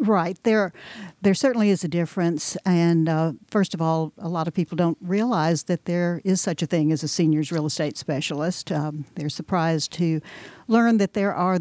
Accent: American